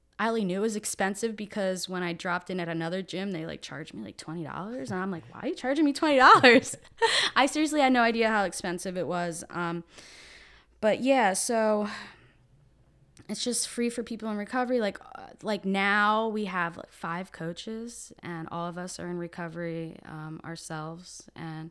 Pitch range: 160-195 Hz